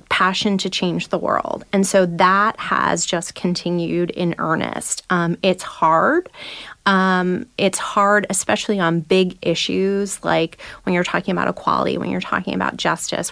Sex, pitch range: female, 175-205 Hz